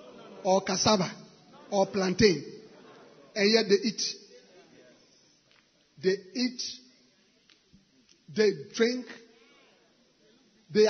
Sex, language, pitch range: male, English, 195-250 Hz